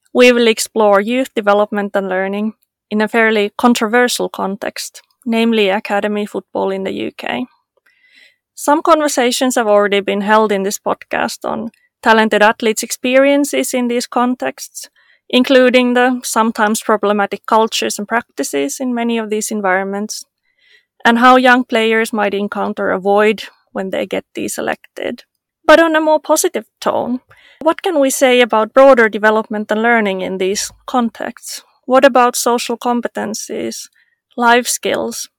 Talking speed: 140 wpm